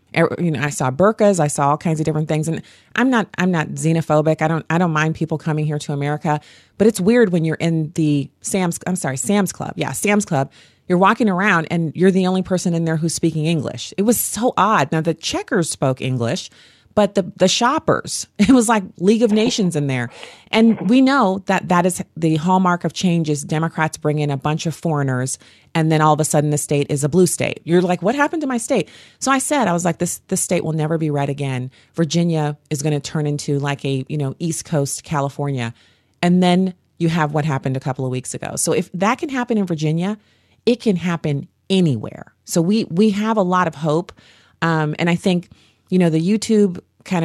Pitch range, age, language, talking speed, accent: 150-185 Hz, 30-49, English, 225 wpm, American